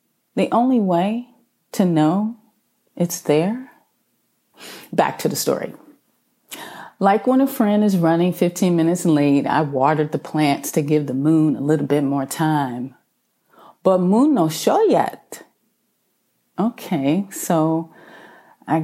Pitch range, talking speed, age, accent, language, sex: 155-210 Hz, 130 wpm, 30-49, American, English, female